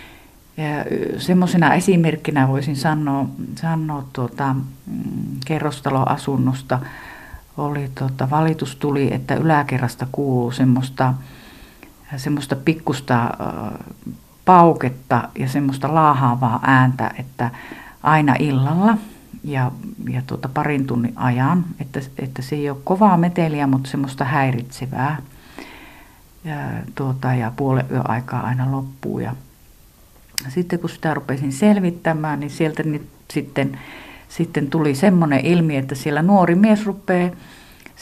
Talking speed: 110 wpm